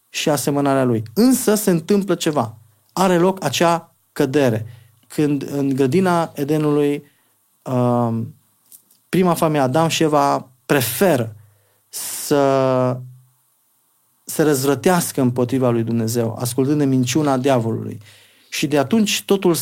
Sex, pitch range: male, 125-160 Hz